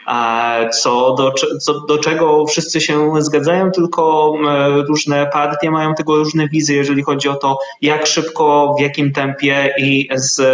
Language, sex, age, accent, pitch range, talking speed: Polish, male, 20-39, native, 140-175 Hz, 150 wpm